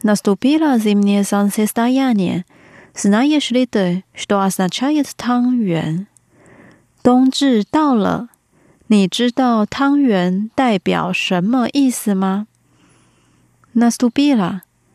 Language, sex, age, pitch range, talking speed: Russian, female, 30-49, 195-275 Hz, 55 wpm